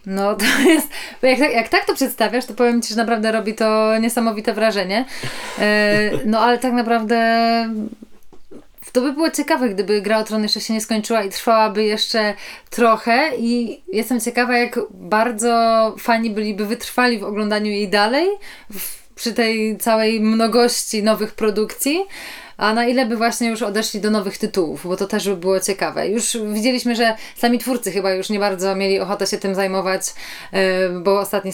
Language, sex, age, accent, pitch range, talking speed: Polish, female, 20-39, native, 200-240 Hz, 165 wpm